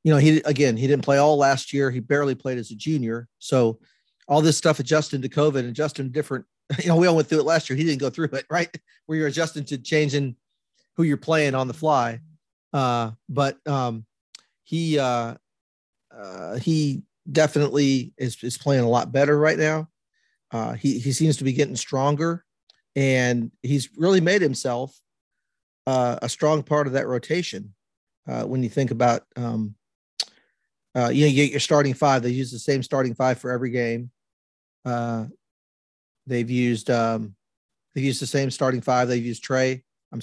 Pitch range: 125-150 Hz